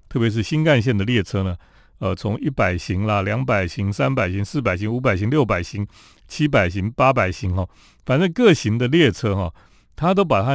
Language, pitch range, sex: Chinese, 100-140 Hz, male